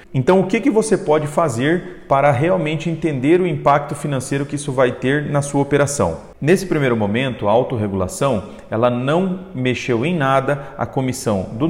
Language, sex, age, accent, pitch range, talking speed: Portuguese, male, 40-59, Brazilian, 130-185 Hz, 170 wpm